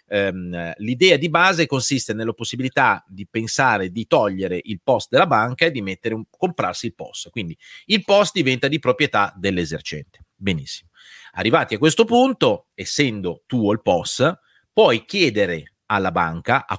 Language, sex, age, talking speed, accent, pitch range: Italian, male, 40-59, 155 wpm, native, 95-135 Hz